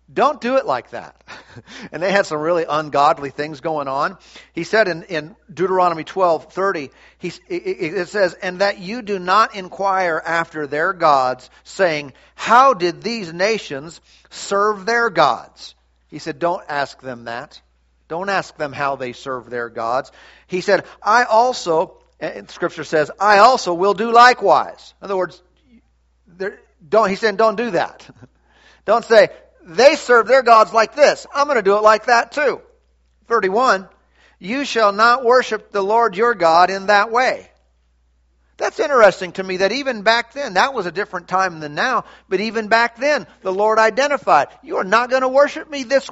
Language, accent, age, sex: English, American, 50-69, male